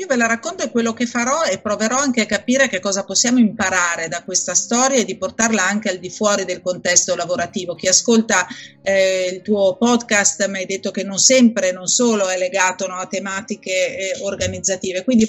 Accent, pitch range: native, 190-225 Hz